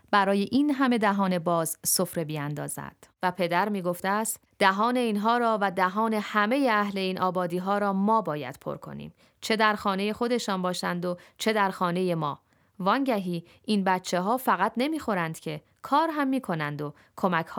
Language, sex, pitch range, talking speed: Persian, female, 180-225 Hz, 165 wpm